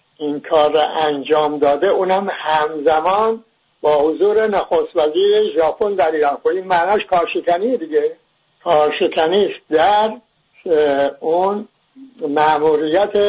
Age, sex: 60-79, male